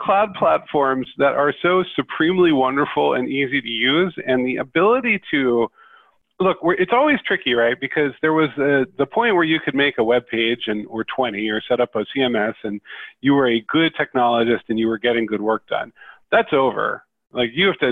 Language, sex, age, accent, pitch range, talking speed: English, male, 40-59, American, 120-155 Hz, 195 wpm